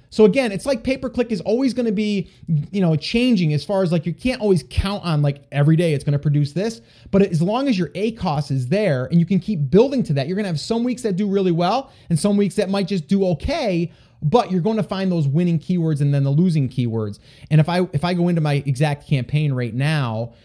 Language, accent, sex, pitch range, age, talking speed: English, American, male, 140-200 Hz, 30-49, 260 wpm